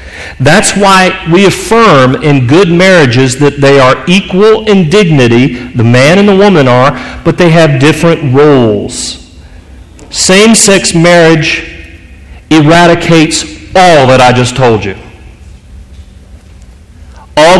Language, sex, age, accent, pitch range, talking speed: English, male, 40-59, American, 110-180 Hz, 115 wpm